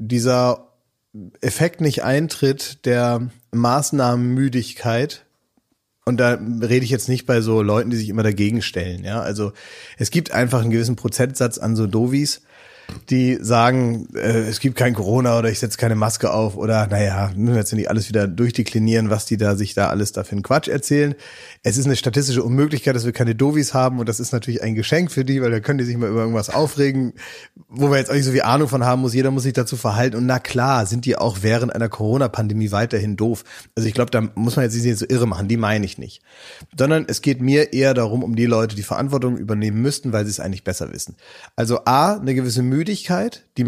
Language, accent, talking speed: German, German, 215 wpm